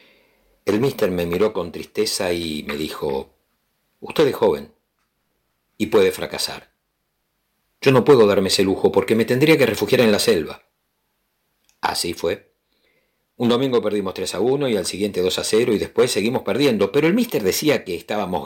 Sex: male